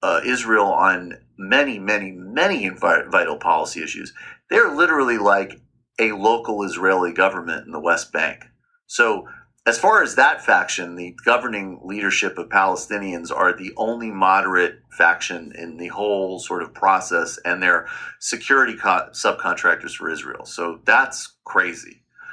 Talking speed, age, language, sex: 135 wpm, 40-59, English, male